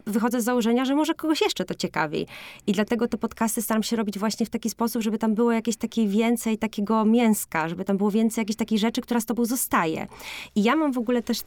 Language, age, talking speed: Polish, 20-39, 235 wpm